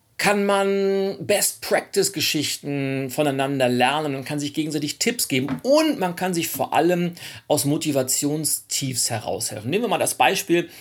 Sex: male